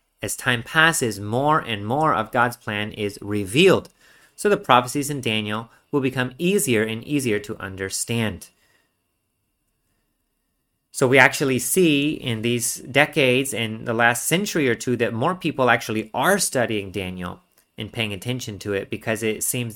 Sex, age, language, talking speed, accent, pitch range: male, 30-49, English, 155 wpm, American, 110-140 Hz